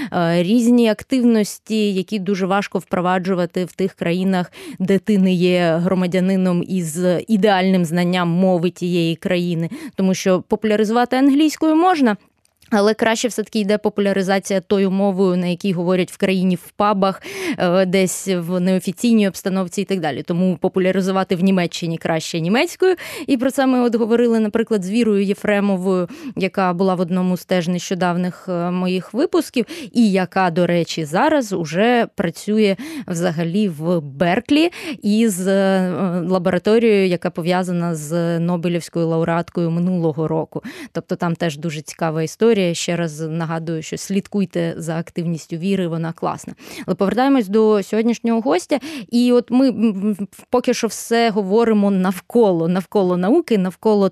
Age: 20-39